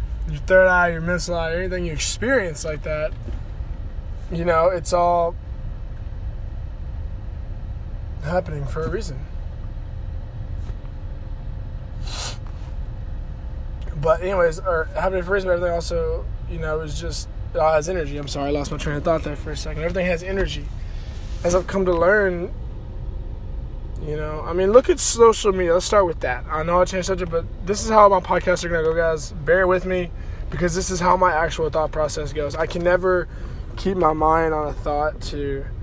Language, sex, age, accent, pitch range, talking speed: English, male, 20-39, American, 115-180 Hz, 175 wpm